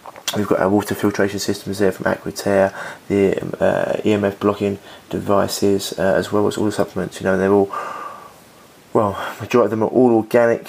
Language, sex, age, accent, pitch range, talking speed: English, male, 20-39, British, 100-110 Hz, 180 wpm